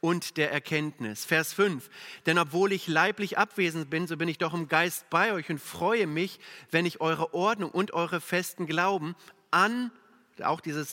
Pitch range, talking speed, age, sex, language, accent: 155-200 Hz, 180 wpm, 40-59, male, German, German